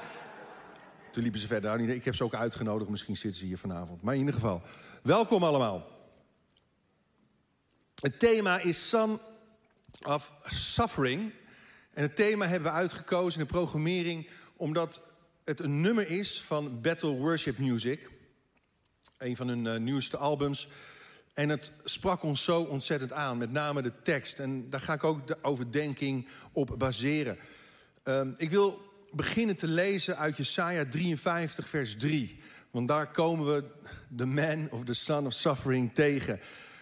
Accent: Dutch